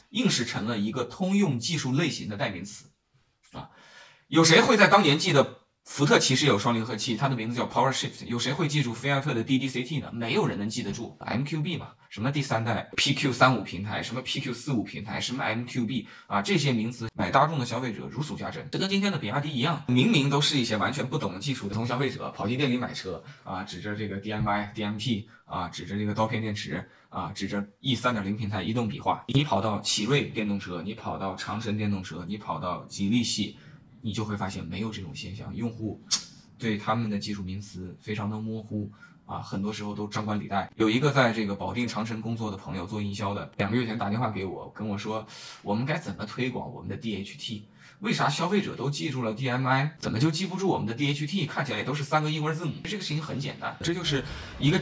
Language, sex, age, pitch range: Chinese, male, 20-39, 105-140 Hz